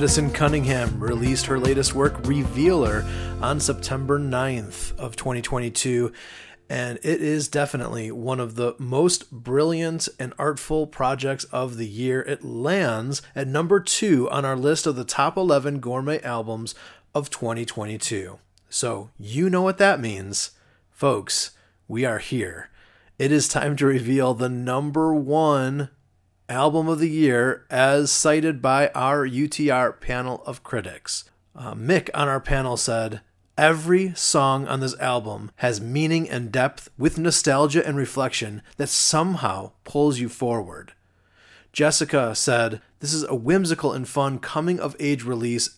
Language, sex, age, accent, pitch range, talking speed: English, male, 30-49, American, 120-150 Hz, 145 wpm